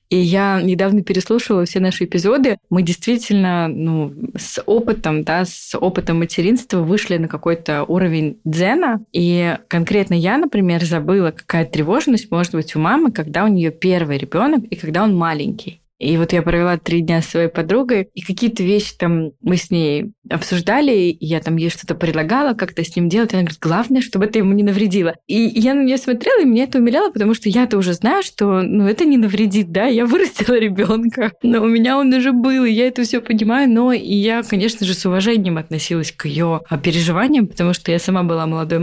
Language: Russian